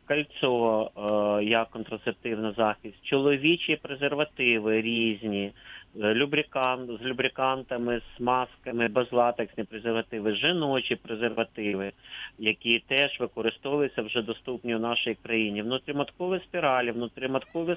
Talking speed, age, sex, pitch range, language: 90 wpm, 30-49, male, 110-145 Hz, Ukrainian